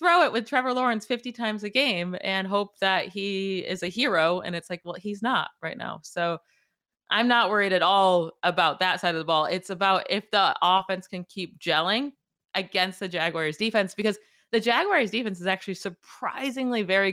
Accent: American